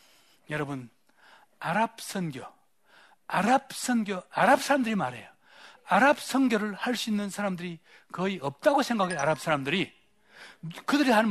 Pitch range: 165-250 Hz